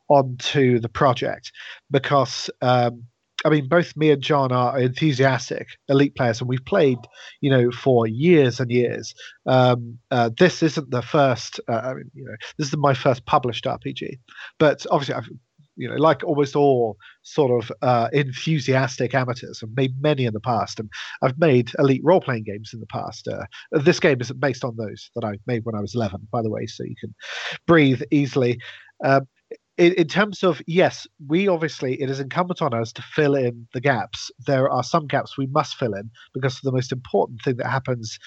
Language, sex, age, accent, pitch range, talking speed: English, male, 40-59, British, 120-145 Hz, 195 wpm